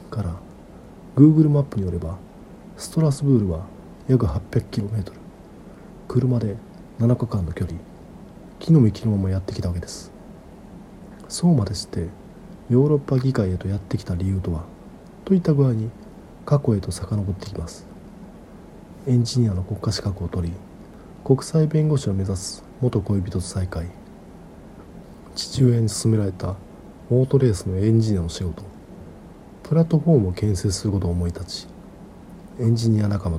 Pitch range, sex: 95-130 Hz, male